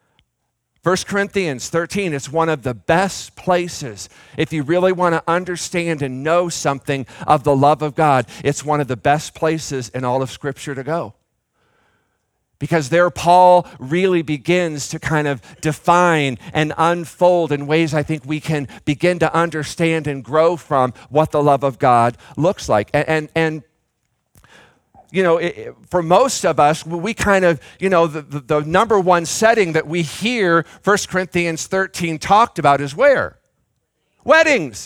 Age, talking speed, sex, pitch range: 50-69, 165 wpm, male, 150-200 Hz